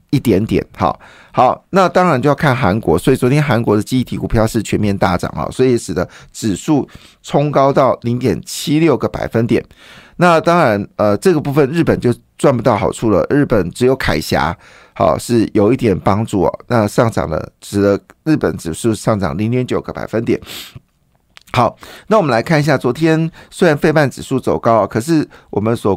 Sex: male